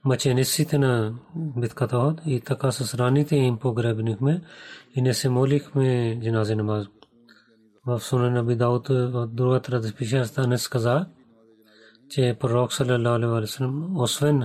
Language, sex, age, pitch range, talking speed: Bulgarian, male, 30-49, 120-135 Hz, 145 wpm